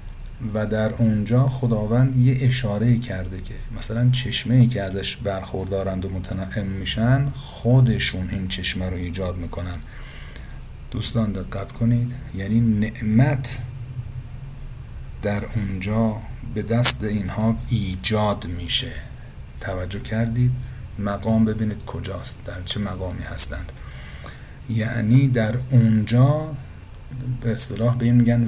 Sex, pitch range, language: male, 95-120 Hz, Persian